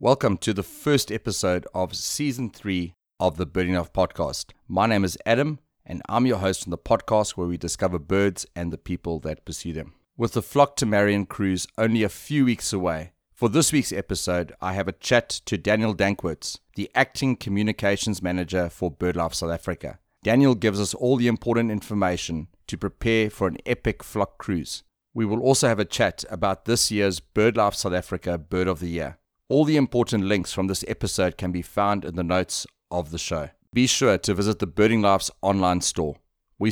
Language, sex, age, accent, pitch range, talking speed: English, male, 30-49, South African, 90-110 Hz, 195 wpm